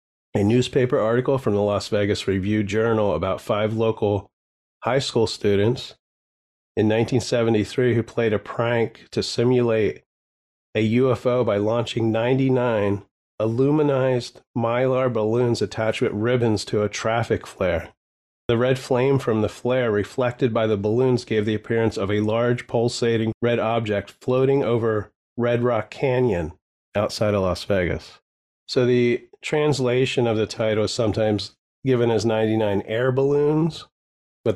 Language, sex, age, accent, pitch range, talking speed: English, male, 30-49, American, 100-125 Hz, 140 wpm